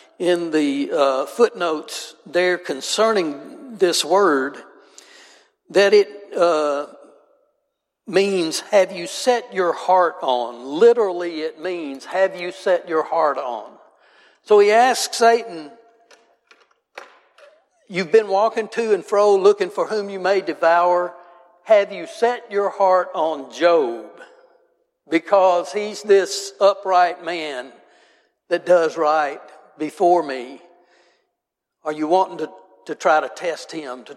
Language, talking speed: English, 125 wpm